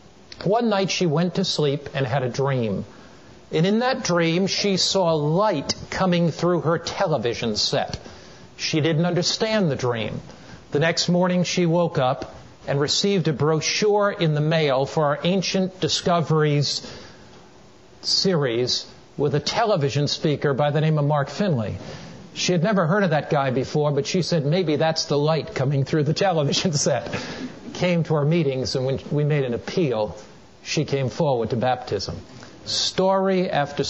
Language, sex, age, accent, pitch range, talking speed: English, male, 50-69, American, 140-180 Hz, 165 wpm